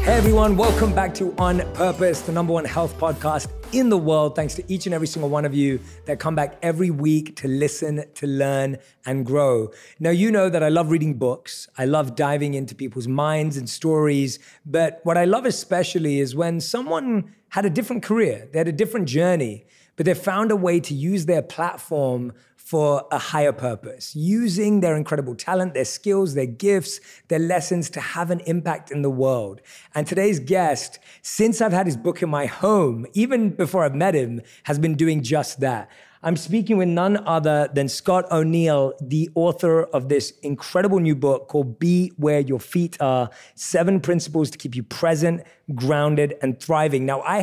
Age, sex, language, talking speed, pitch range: 30-49, male, English, 190 wpm, 140-180 Hz